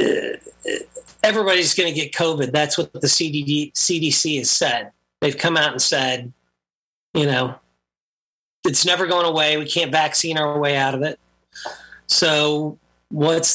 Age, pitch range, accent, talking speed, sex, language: 40-59, 95-155 Hz, American, 140 wpm, male, English